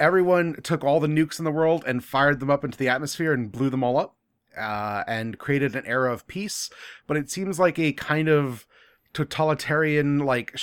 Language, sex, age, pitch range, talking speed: English, male, 30-49, 115-145 Hz, 205 wpm